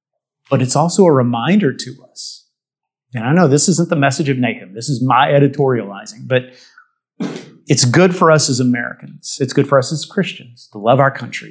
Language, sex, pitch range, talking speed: English, male, 125-160 Hz, 195 wpm